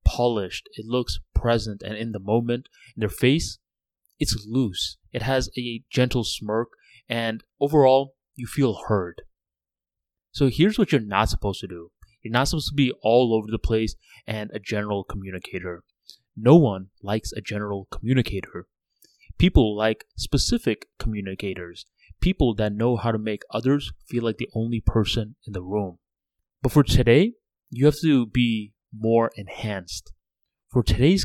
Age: 20-39